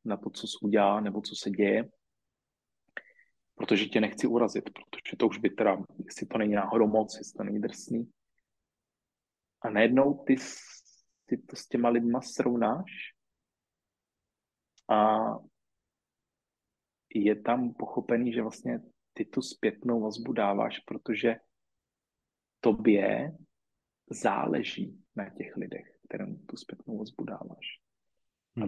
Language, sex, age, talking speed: Czech, male, 30-49, 120 wpm